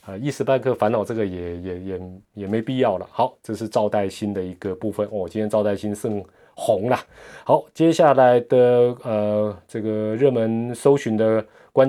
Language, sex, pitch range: Chinese, male, 95-125 Hz